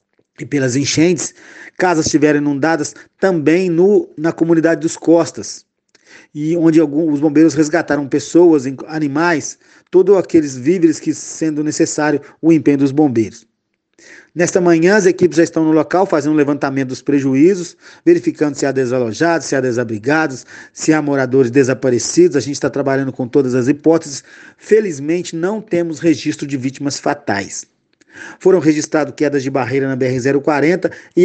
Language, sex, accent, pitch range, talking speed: Portuguese, male, Brazilian, 140-170 Hz, 145 wpm